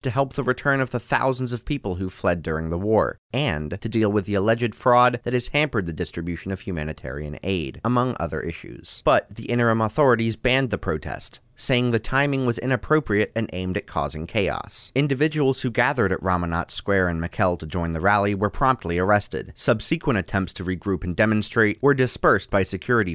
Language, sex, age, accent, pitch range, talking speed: English, male, 30-49, American, 95-130 Hz, 190 wpm